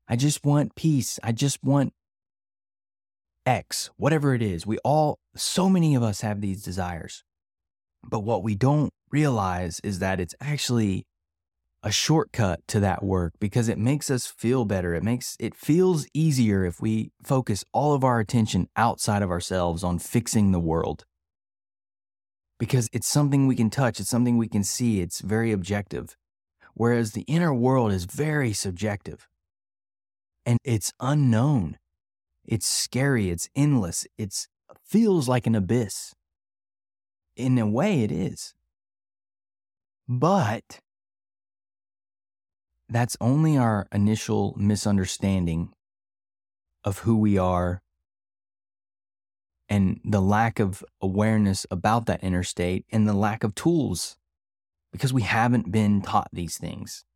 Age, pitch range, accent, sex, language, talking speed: 20-39, 95-120 Hz, American, male, English, 135 wpm